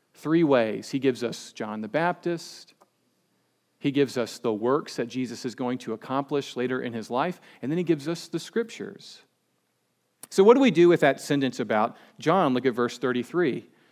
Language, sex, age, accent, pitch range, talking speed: English, male, 40-59, American, 130-165 Hz, 190 wpm